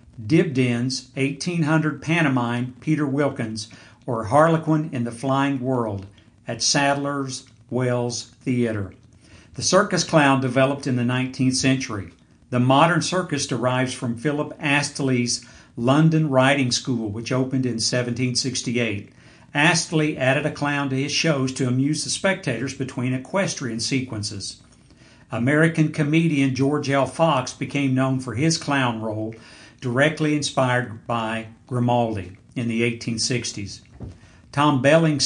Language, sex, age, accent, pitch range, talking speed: English, male, 60-79, American, 120-145 Hz, 120 wpm